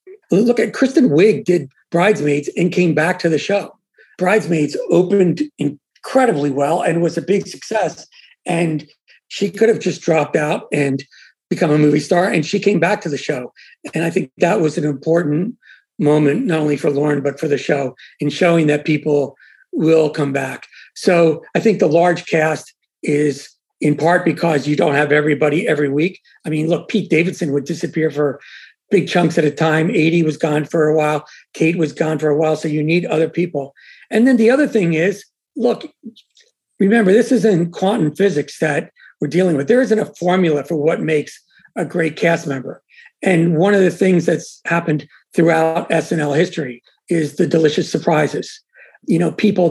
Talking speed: 185 wpm